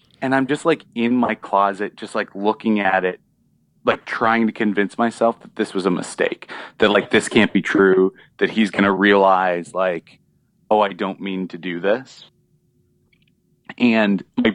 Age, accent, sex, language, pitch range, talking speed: 30-49, American, male, English, 105-155 Hz, 175 wpm